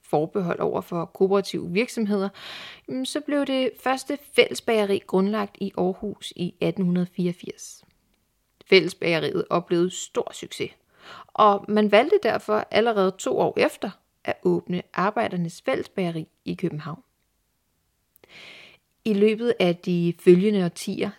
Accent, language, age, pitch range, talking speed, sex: native, Danish, 30-49, 180-230 Hz, 110 wpm, female